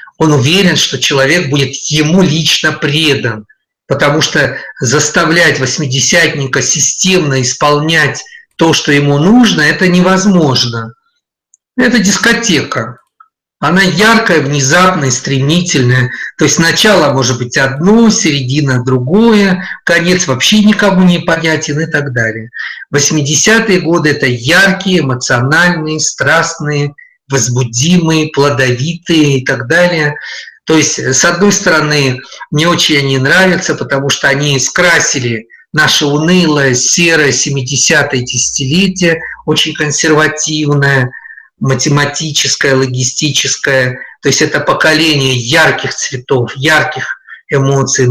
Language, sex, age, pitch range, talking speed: Russian, male, 50-69, 135-170 Hz, 105 wpm